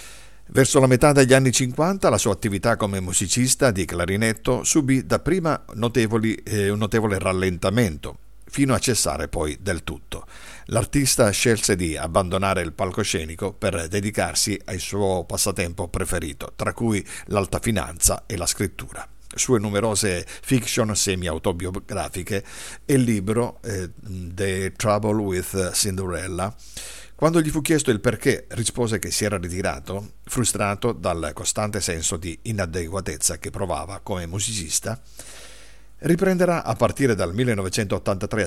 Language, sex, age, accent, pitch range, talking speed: Italian, male, 50-69, native, 90-120 Hz, 130 wpm